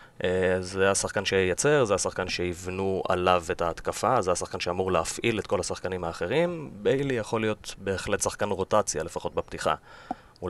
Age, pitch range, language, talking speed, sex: 30-49, 90-120 Hz, Hebrew, 150 wpm, male